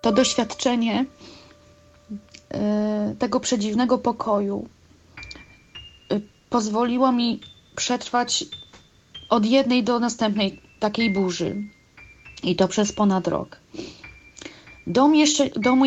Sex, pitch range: female, 210-255 Hz